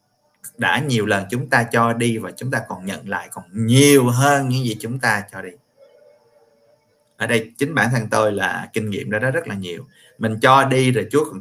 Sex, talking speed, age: male, 215 wpm, 20-39